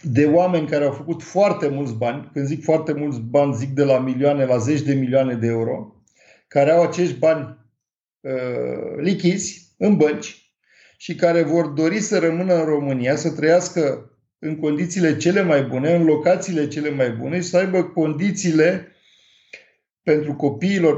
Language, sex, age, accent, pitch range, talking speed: Romanian, male, 50-69, native, 140-175 Hz, 165 wpm